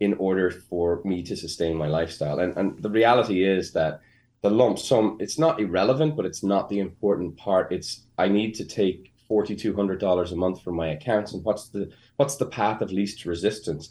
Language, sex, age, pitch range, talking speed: English, male, 20-39, 95-110 Hz, 200 wpm